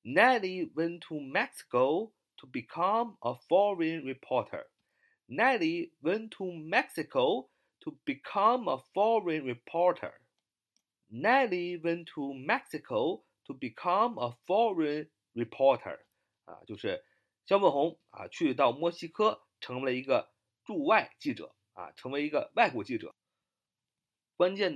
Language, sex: Chinese, male